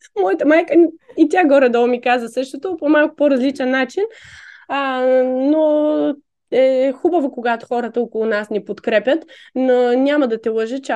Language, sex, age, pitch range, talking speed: Bulgarian, female, 20-39, 195-270 Hz, 160 wpm